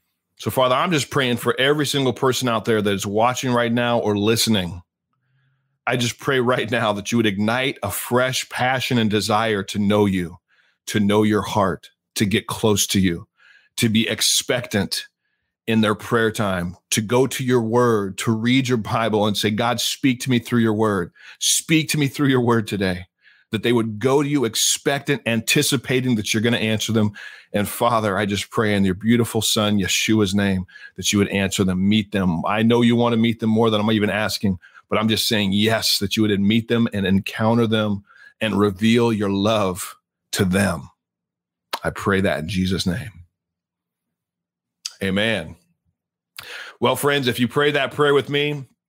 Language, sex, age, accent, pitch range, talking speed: English, male, 40-59, American, 105-125 Hz, 190 wpm